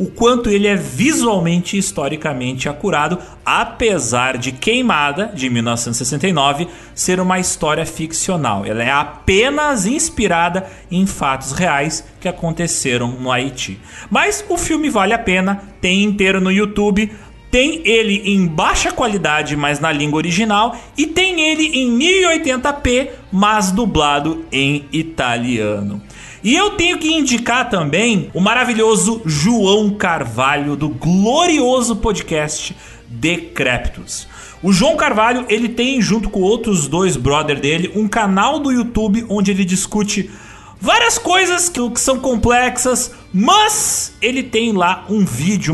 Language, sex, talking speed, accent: Portuguese, male, 130 wpm, Brazilian